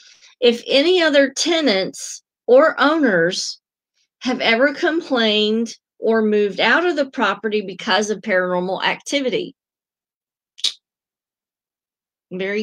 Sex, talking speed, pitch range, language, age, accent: female, 95 wpm, 205-245 Hz, English, 40-59, American